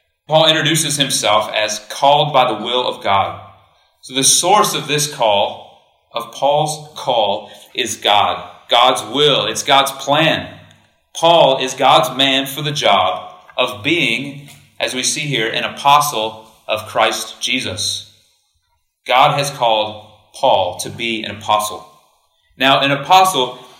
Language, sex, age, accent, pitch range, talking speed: English, male, 30-49, American, 115-150 Hz, 140 wpm